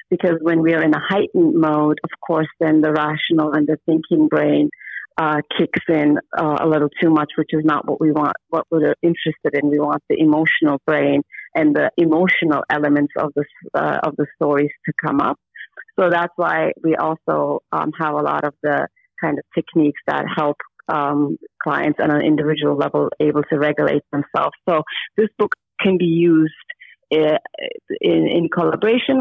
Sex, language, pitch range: female, English, 150-185 Hz